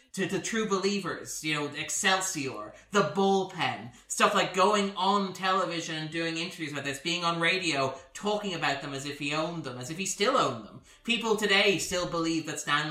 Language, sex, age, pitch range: English, male, 20-39, 135-185 Hz